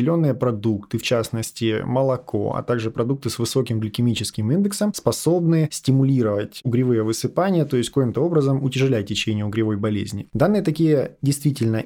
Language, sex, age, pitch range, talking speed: Ukrainian, male, 20-39, 115-150 Hz, 130 wpm